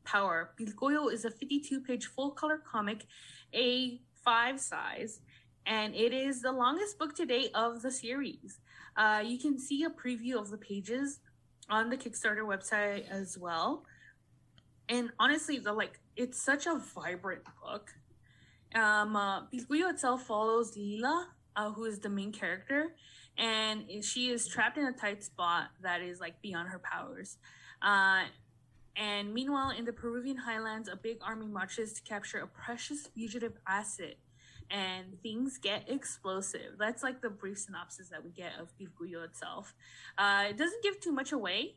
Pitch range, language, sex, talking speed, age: 190-250 Hz, English, female, 150 wpm, 20-39